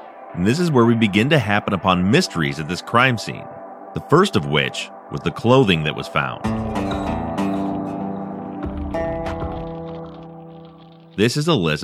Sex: male